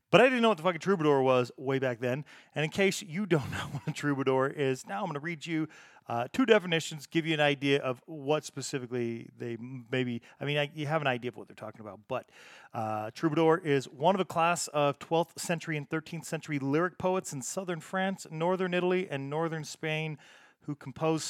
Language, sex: English, male